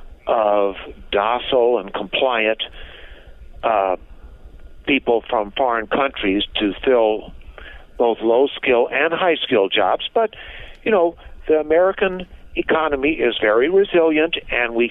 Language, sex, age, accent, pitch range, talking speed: English, male, 50-69, American, 115-175 Hz, 110 wpm